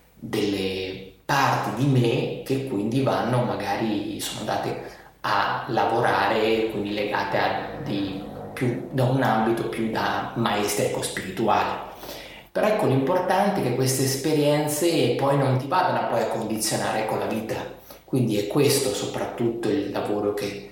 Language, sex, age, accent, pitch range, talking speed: Italian, male, 30-49, native, 110-180 Hz, 140 wpm